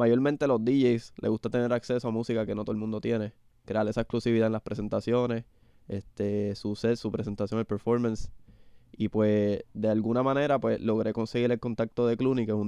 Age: 20-39